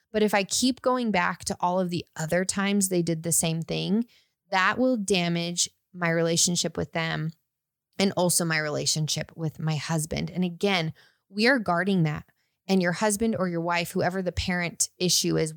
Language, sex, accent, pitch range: English, female, American, 165-200 Hz